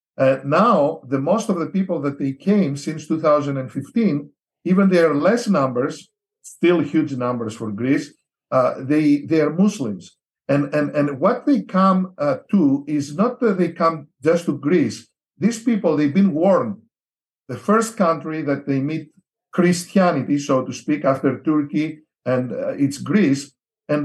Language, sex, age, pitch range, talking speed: English, male, 50-69, 145-195 Hz, 160 wpm